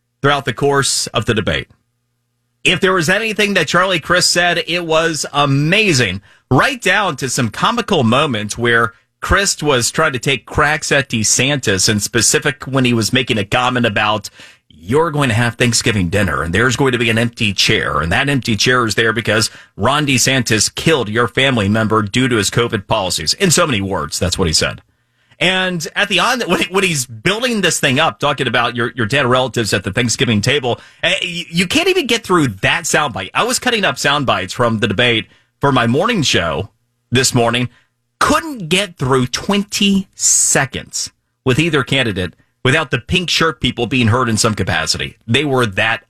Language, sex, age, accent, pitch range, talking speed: English, male, 30-49, American, 115-160 Hz, 185 wpm